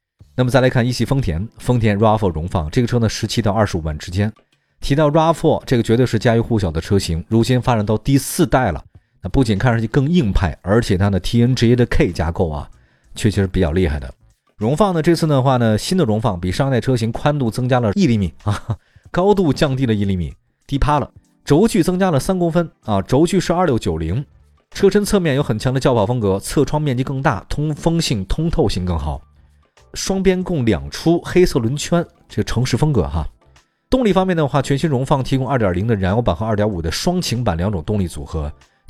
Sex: male